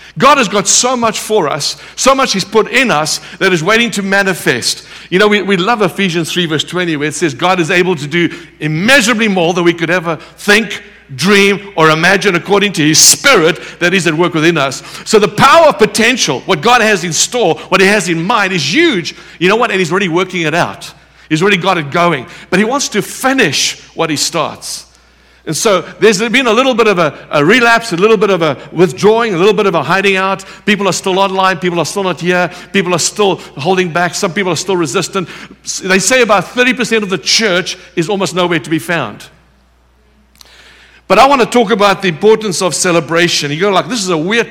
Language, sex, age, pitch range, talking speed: English, male, 60-79, 165-205 Hz, 225 wpm